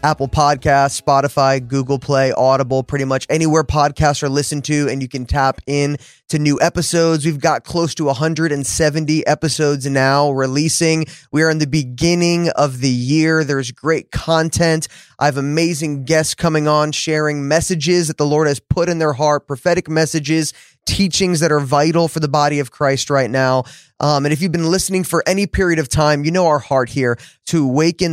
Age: 20-39